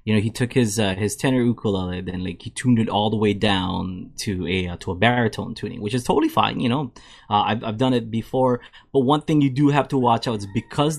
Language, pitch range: English, 105-125 Hz